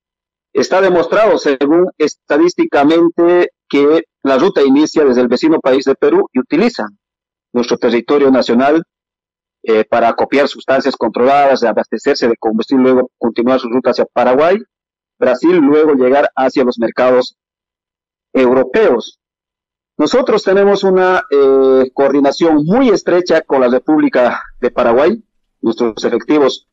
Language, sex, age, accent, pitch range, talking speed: Spanish, male, 40-59, Mexican, 130-170 Hz, 125 wpm